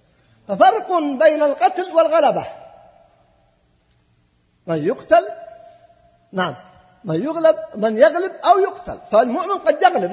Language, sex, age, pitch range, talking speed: Arabic, male, 50-69, 230-325 Hz, 95 wpm